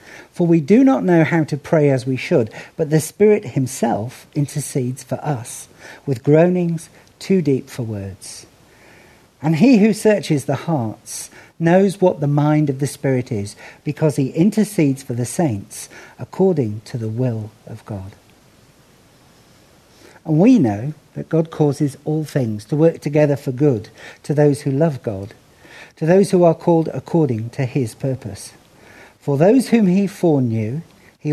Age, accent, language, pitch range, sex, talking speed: 50-69, British, English, 120-165 Hz, male, 160 wpm